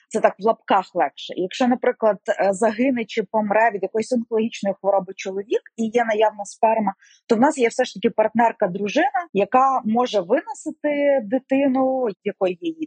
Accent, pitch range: native, 195-255 Hz